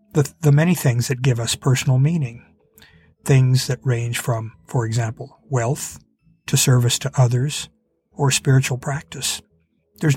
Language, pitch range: English, 125-150 Hz